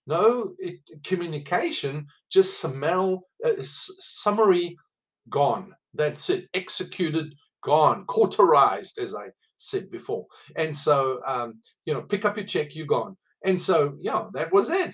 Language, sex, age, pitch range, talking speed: English, male, 50-69, 145-225 Hz, 140 wpm